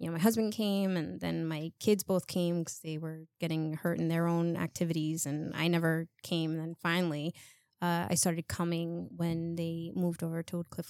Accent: American